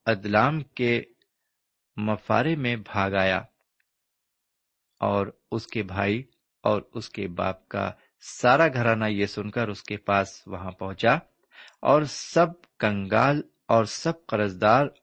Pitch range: 100-135 Hz